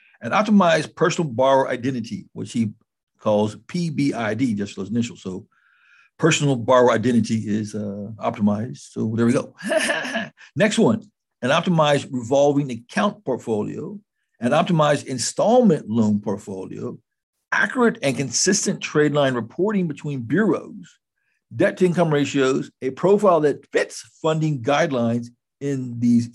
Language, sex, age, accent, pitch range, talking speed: English, male, 60-79, American, 120-185 Hz, 125 wpm